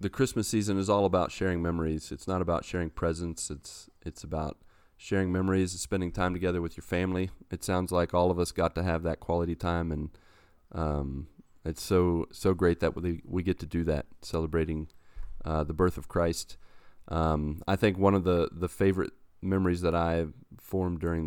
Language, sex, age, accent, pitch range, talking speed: English, male, 30-49, American, 75-90 Hz, 195 wpm